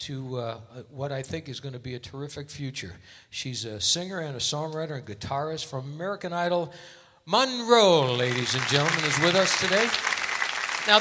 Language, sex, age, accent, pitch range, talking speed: English, male, 60-79, American, 125-170 Hz, 175 wpm